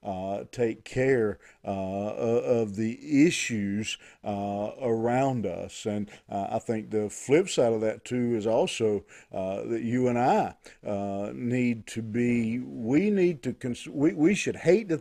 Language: English